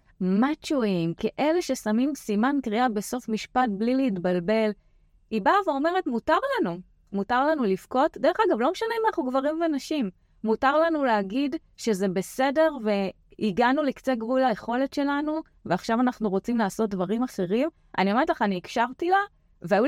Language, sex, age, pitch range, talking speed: Hebrew, female, 30-49, 195-270 Hz, 145 wpm